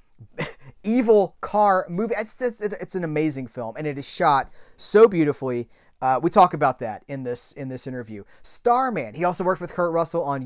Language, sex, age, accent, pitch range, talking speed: English, male, 30-49, American, 135-190 Hz, 190 wpm